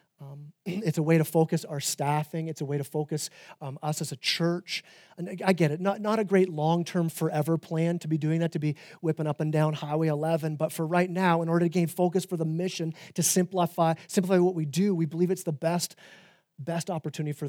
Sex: male